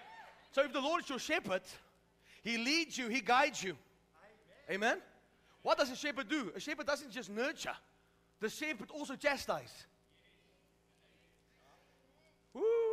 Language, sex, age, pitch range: English, male, 30-49, 225-285 Hz